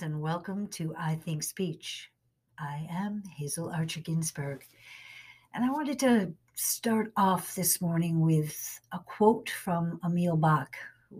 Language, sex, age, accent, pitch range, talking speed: English, female, 60-79, American, 145-190 Hz, 140 wpm